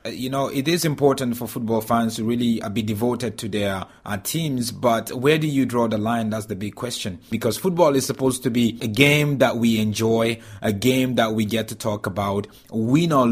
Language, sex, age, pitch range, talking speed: English, male, 30-49, 110-130 Hz, 215 wpm